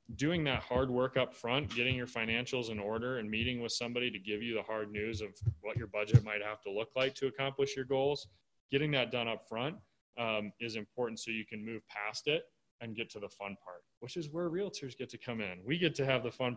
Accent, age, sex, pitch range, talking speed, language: American, 20-39, male, 110-130 Hz, 245 wpm, English